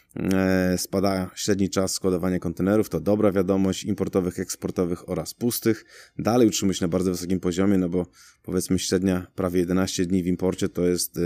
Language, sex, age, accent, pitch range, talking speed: Polish, male, 20-39, native, 90-95 Hz, 160 wpm